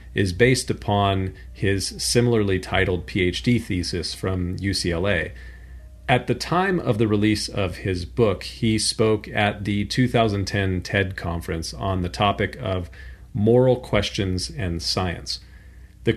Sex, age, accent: male, 40-59, American